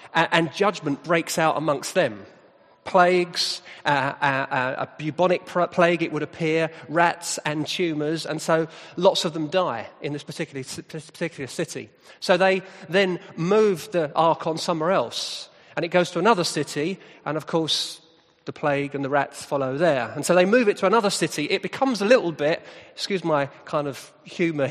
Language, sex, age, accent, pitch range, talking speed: English, male, 40-59, British, 155-195 Hz, 170 wpm